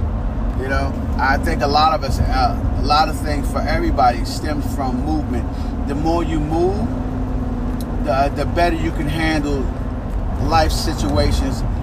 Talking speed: 150 wpm